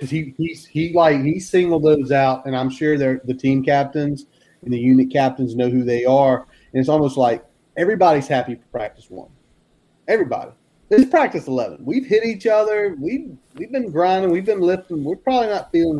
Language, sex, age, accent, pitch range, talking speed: English, male, 30-49, American, 135-170 Hz, 200 wpm